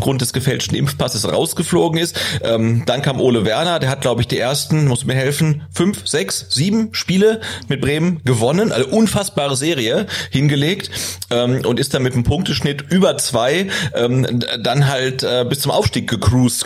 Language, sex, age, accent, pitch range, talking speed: German, male, 40-59, German, 115-145 Hz, 175 wpm